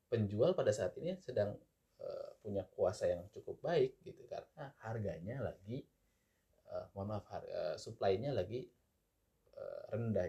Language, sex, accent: Indonesian, male, native